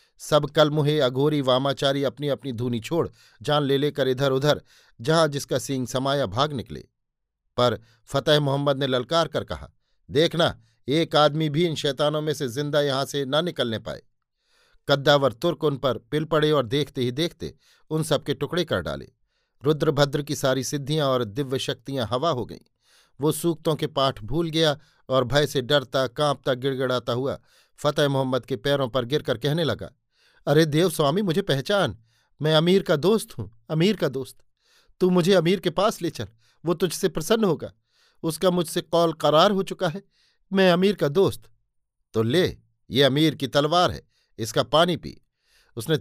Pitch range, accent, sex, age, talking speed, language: 130-155 Hz, native, male, 50-69, 175 wpm, Hindi